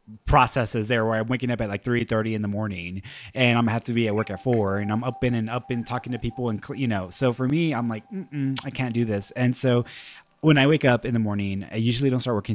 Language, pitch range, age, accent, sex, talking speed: English, 105-130 Hz, 20-39, American, male, 280 wpm